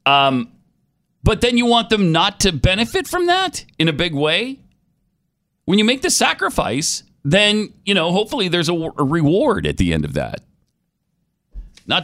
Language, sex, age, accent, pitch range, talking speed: English, male, 40-59, American, 100-150 Hz, 165 wpm